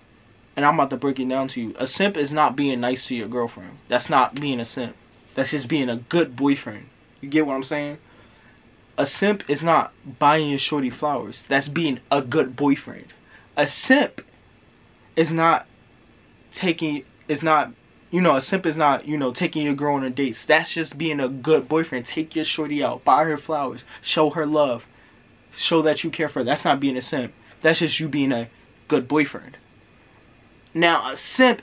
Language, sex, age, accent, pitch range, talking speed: English, male, 20-39, American, 125-160 Hz, 200 wpm